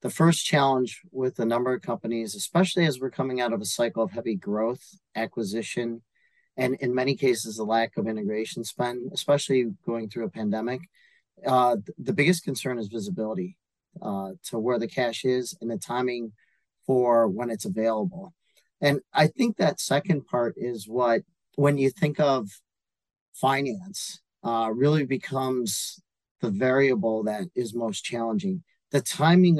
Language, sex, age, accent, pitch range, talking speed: English, male, 40-59, American, 115-175 Hz, 155 wpm